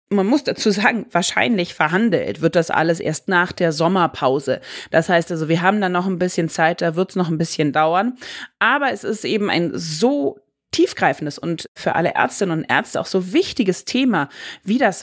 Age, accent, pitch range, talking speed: 30-49, German, 170-220 Hz, 195 wpm